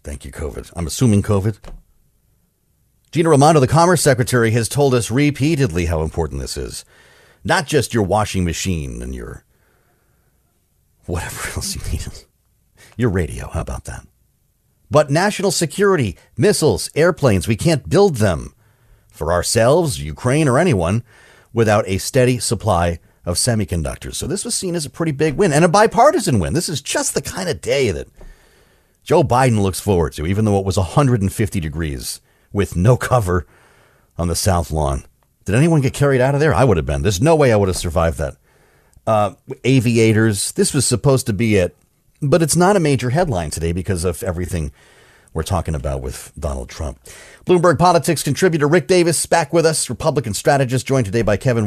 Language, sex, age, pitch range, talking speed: English, male, 40-59, 90-145 Hz, 175 wpm